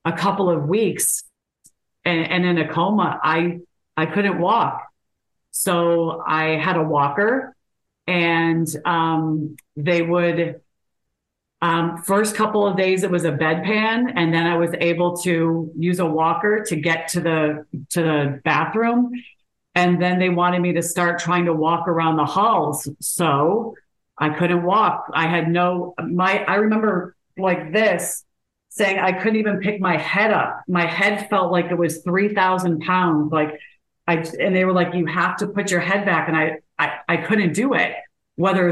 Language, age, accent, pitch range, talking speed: English, 40-59, American, 165-190 Hz, 170 wpm